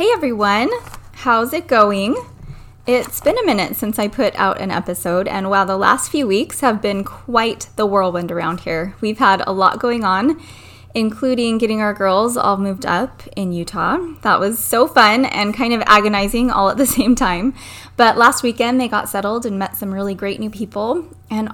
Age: 20-39